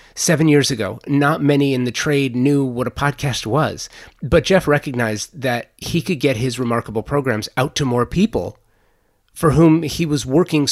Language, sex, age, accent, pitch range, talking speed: English, male, 30-49, American, 115-145 Hz, 180 wpm